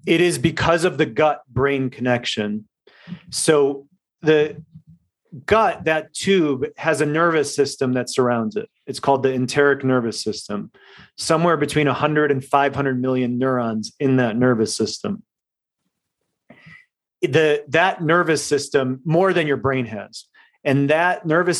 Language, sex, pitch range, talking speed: English, male, 130-155 Hz, 135 wpm